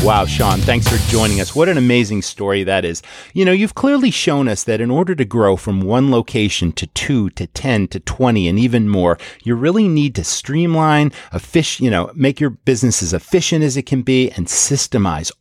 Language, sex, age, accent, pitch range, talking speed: English, male, 40-59, American, 100-140 Hz, 210 wpm